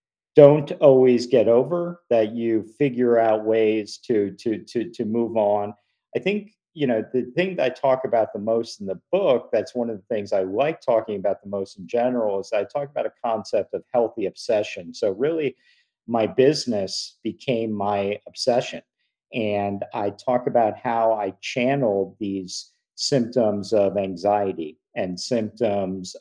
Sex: male